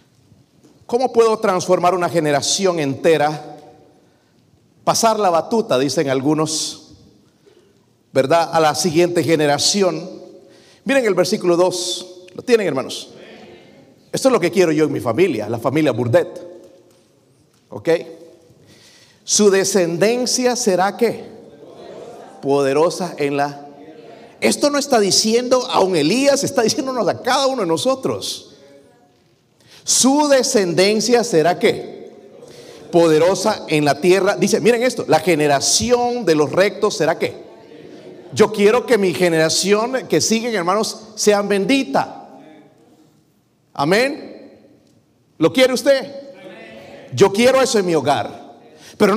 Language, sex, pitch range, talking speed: Spanish, male, 165-235 Hz, 115 wpm